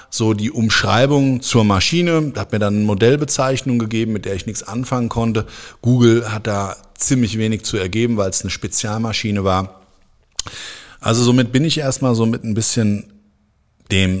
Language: German